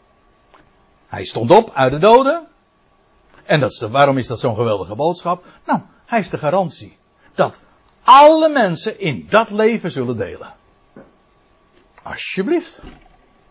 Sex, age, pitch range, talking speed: male, 60-79, 140-225 Hz, 135 wpm